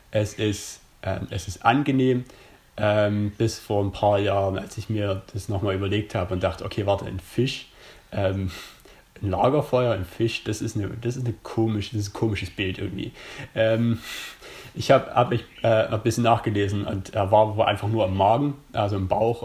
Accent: German